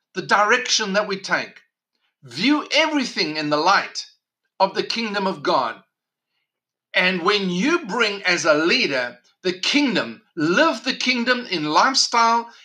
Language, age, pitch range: English, 50-69, 180-230 Hz